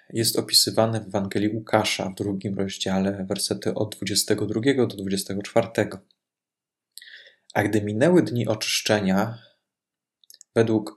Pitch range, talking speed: 100-120 Hz, 105 wpm